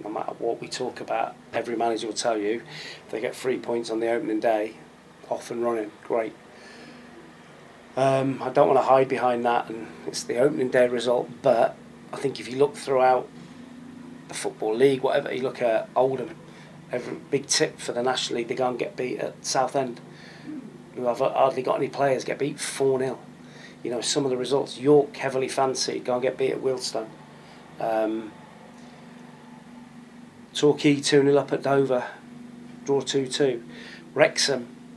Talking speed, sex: 175 wpm, male